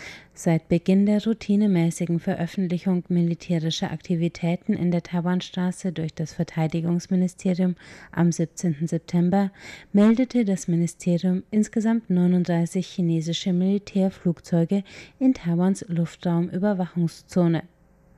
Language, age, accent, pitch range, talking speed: German, 30-49, German, 170-190 Hz, 85 wpm